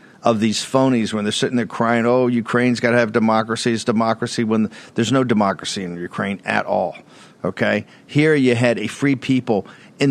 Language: English